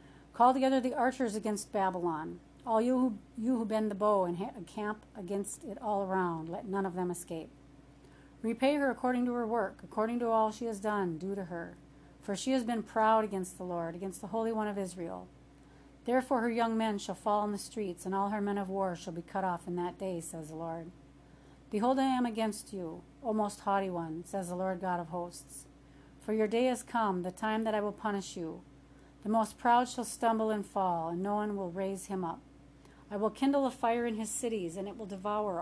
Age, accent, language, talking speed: 40-59, American, English, 220 wpm